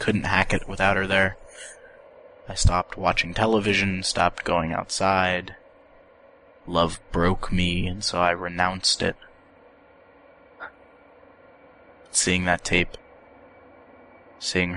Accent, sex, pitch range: American, male, 90-95 Hz